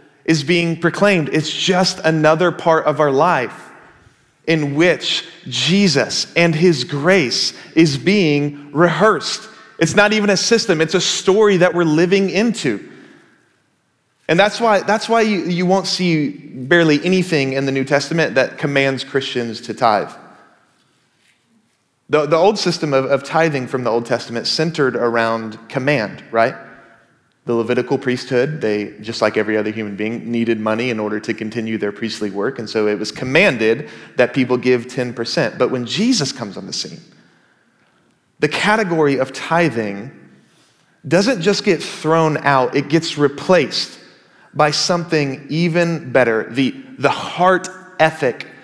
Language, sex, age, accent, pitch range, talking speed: English, male, 30-49, American, 120-175 Hz, 150 wpm